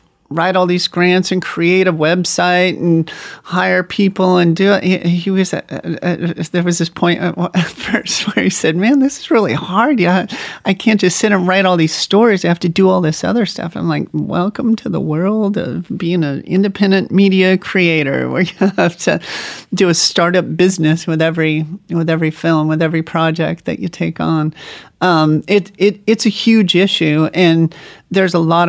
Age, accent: 30-49, American